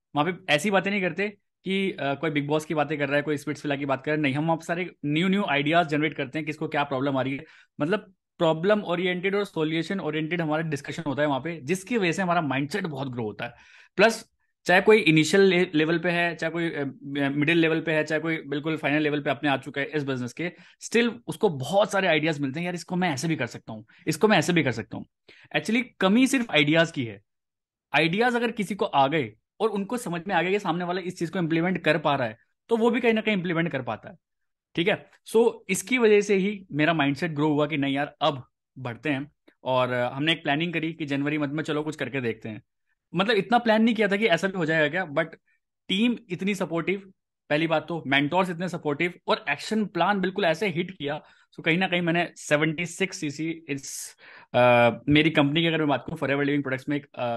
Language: Hindi